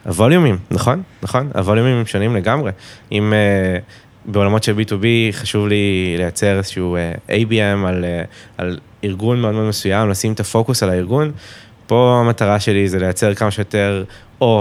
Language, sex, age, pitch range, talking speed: Hebrew, male, 20-39, 95-115 Hz, 155 wpm